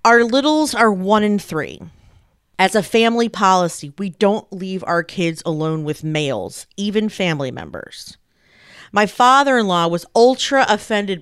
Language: English